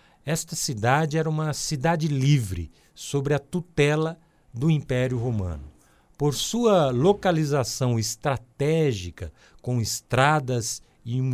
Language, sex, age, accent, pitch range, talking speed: Portuguese, male, 60-79, Brazilian, 120-160 Hz, 105 wpm